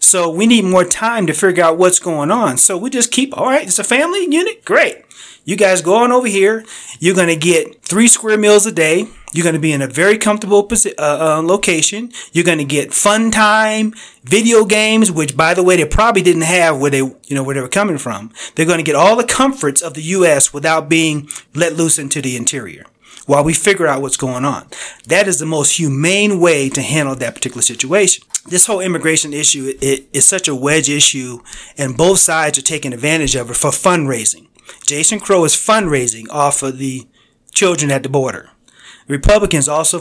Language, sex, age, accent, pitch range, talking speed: English, male, 30-49, American, 140-195 Hz, 210 wpm